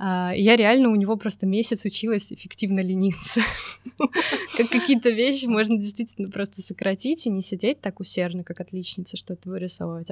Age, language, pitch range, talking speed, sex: 20-39, Russian, 175-200 Hz, 140 wpm, female